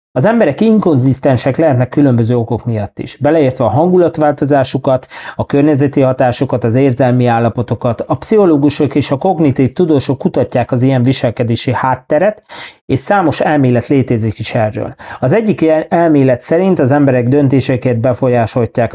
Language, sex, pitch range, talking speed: Hungarian, male, 125-150 Hz, 135 wpm